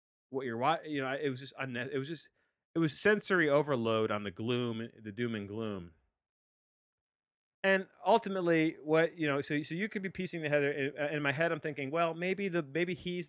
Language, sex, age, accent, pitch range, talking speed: English, male, 30-49, American, 95-140 Hz, 200 wpm